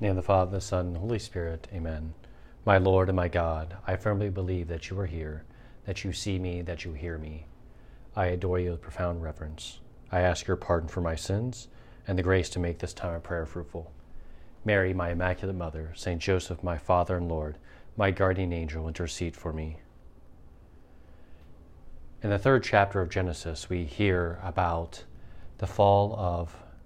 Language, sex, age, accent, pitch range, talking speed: English, male, 30-49, American, 85-95 Hz, 190 wpm